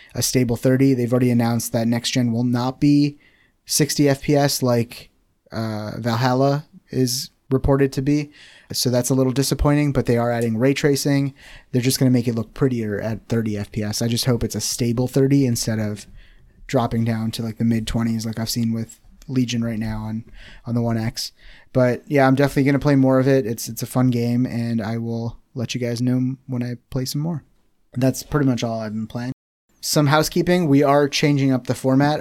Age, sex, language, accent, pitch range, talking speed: 20-39, male, English, American, 115-140 Hz, 210 wpm